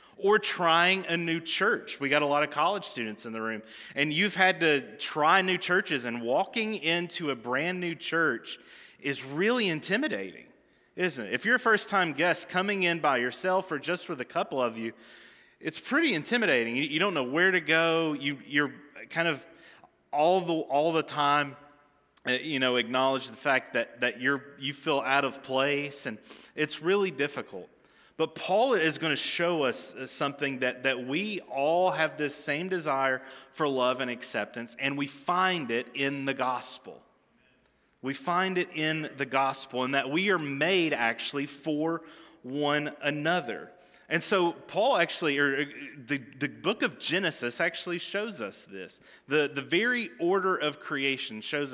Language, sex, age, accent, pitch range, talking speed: English, male, 30-49, American, 135-175 Hz, 170 wpm